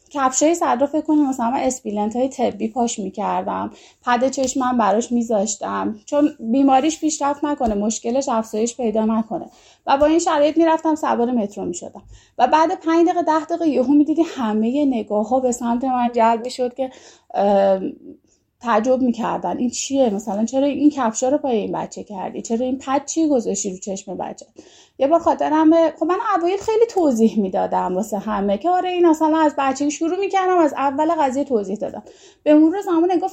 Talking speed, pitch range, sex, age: 180 wpm, 225-310 Hz, female, 20-39